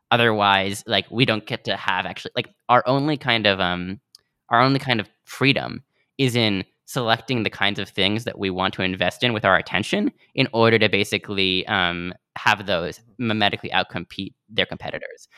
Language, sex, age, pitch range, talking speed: English, male, 10-29, 95-115 Hz, 180 wpm